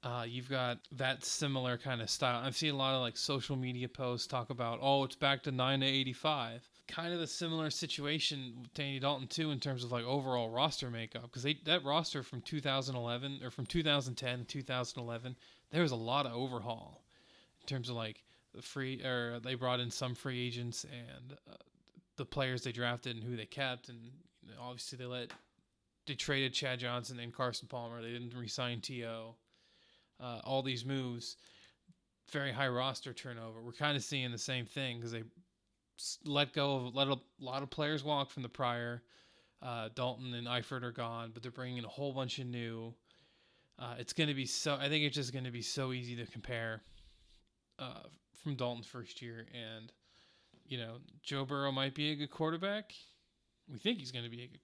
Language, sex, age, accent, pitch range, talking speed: English, male, 20-39, American, 120-140 Hz, 215 wpm